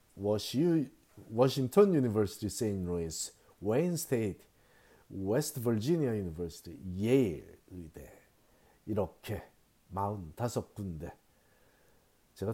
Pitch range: 100-140 Hz